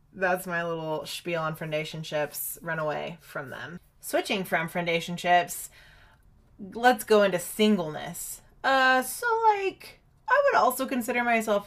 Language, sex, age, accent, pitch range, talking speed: English, female, 20-39, American, 155-215 Hz, 130 wpm